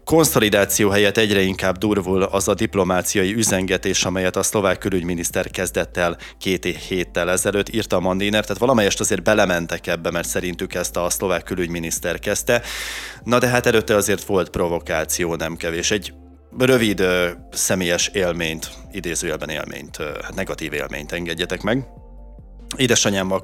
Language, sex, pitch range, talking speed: Hungarian, male, 85-105 Hz, 135 wpm